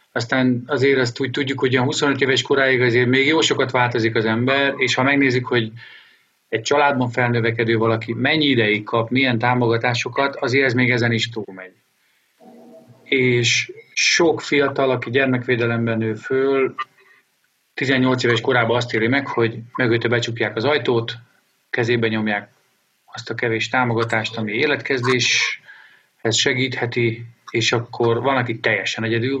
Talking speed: 140 wpm